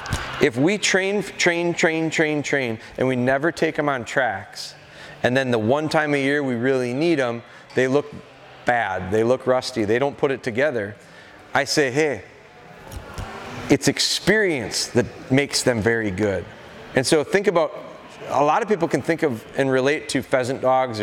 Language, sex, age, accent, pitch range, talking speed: English, male, 30-49, American, 120-160 Hz, 175 wpm